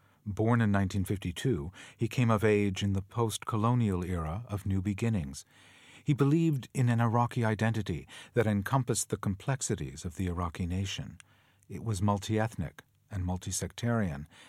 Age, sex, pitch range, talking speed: 50-69, male, 95-120 Hz, 135 wpm